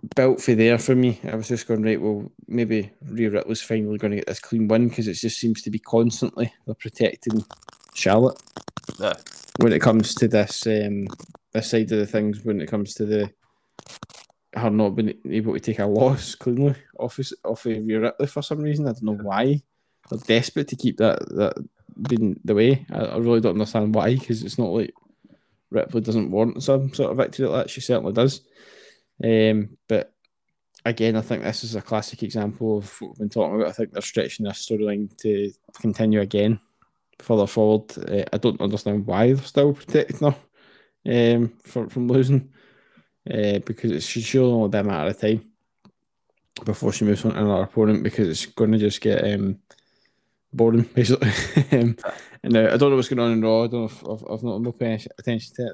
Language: English